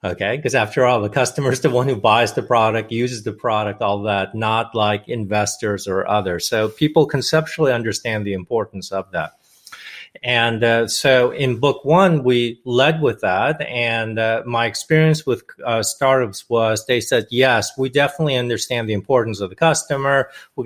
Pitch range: 110-140 Hz